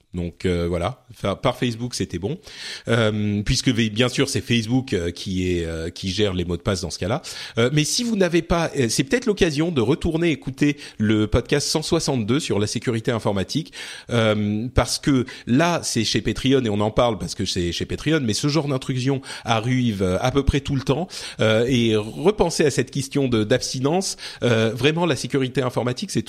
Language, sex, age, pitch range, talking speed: French, male, 40-59, 105-145 Hz, 195 wpm